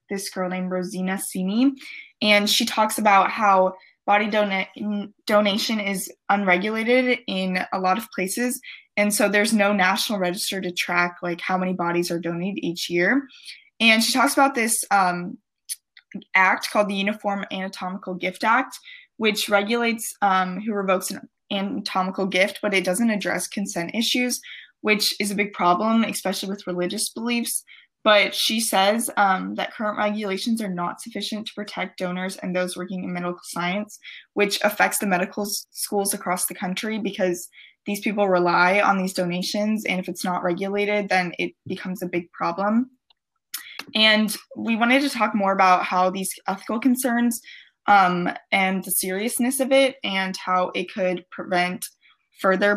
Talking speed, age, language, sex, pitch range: 160 wpm, 20-39, English, female, 185-220 Hz